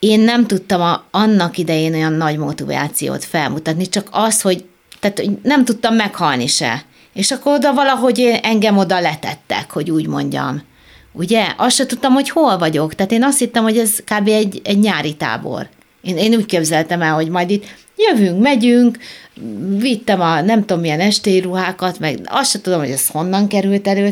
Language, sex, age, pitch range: Hungarian, female, 30-49, 165-220 Hz